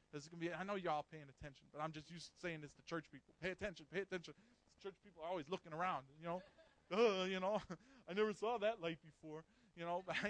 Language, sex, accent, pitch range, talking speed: English, male, American, 165-270 Hz, 260 wpm